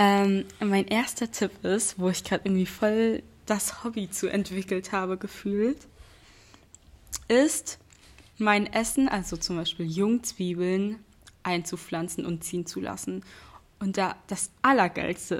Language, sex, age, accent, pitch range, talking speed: German, female, 20-39, German, 185-225 Hz, 120 wpm